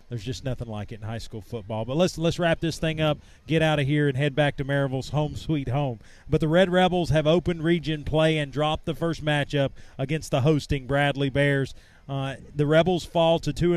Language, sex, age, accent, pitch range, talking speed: English, male, 40-59, American, 145-165 Hz, 225 wpm